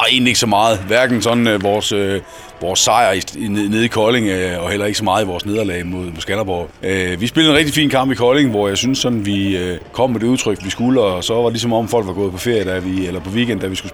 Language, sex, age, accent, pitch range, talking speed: Danish, male, 30-49, native, 95-125 Hz, 295 wpm